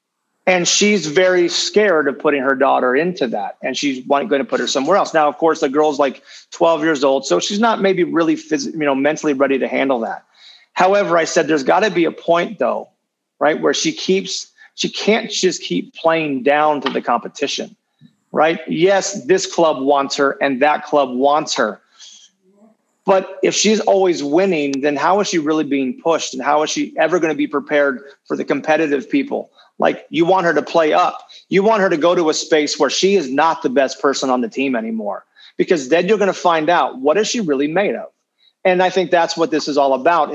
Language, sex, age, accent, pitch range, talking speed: English, male, 30-49, American, 145-185 Hz, 220 wpm